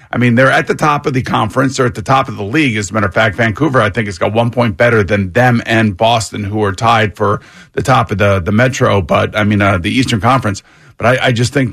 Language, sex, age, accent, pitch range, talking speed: English, male, 50-69, American, 105-135 Hz, 280 wpm